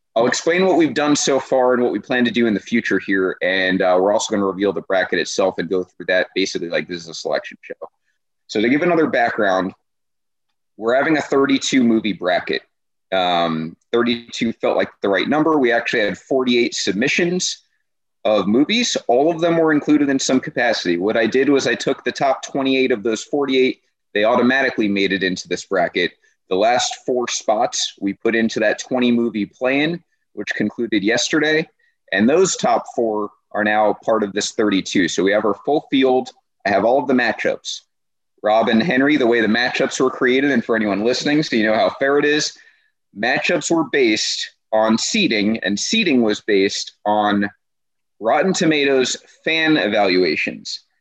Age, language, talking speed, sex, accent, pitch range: 30-49, English, 185 wpm, male, American, 105-155 Hz